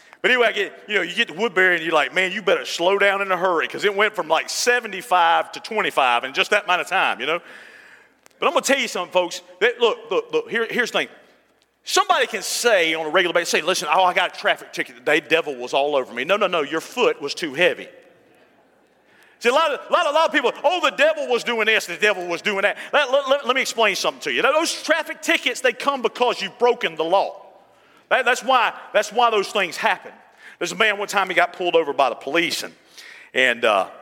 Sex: male